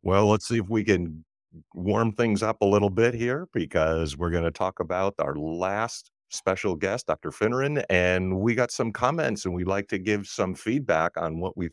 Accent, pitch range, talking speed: American, 80-95 Hz, 205 wpm